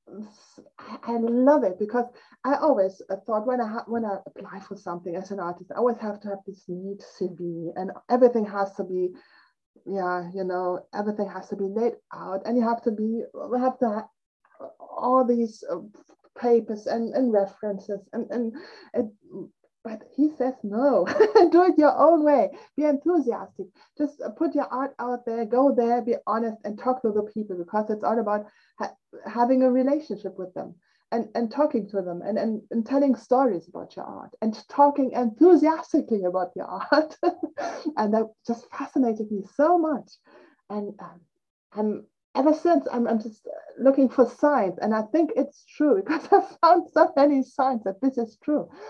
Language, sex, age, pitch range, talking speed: English, female, 30-49, 205-275 Hz, 175 wpm